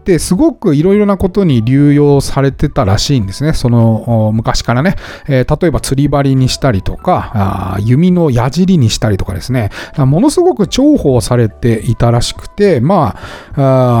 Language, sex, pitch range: Japanese, male, 115-180 Hz